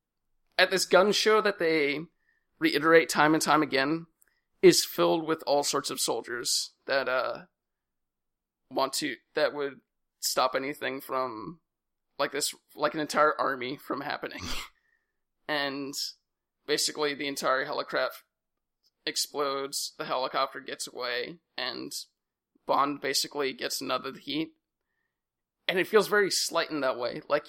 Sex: male